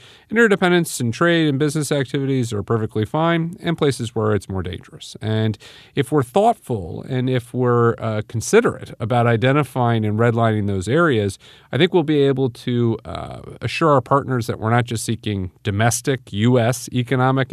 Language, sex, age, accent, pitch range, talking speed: English, male, 40-59, American, 105-140 Hz, 165 wpm